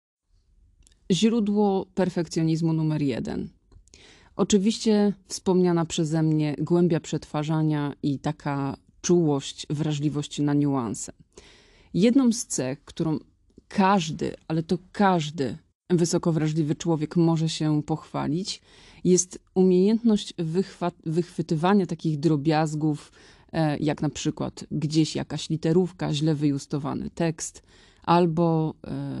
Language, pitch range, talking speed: Polish, 150-180 Hz, 90 wpm